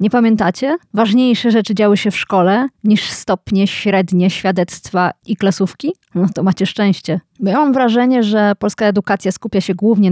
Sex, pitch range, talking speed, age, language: female, 185-235 Hz, 165 wpm, 20-39, Polish